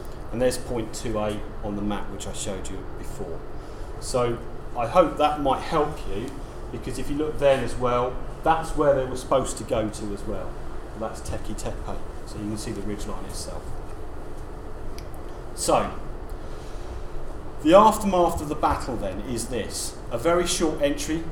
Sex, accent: male, British